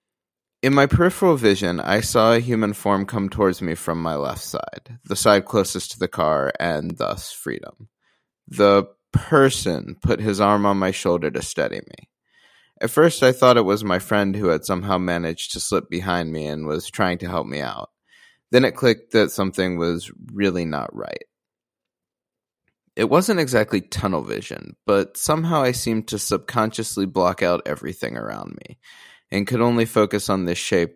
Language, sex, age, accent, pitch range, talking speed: English, male, 20-39, American, 85-115 Hz, 175 wpm